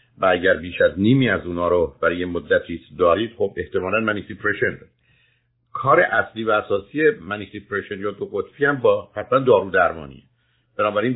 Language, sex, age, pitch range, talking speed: Persian, male, 50-69, 100-135 Hz, 160 wpm